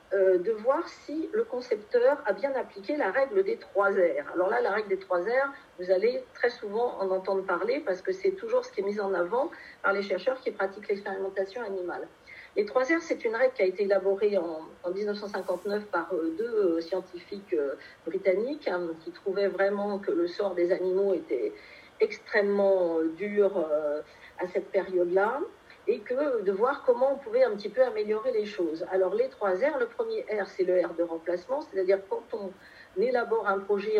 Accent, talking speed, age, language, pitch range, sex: French, 200 wpm, 40-59, French, 190-310 Hz, female